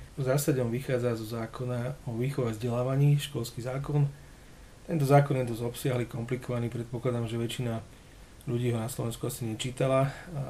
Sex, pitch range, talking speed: male, 115-130 Hz, 155 wpm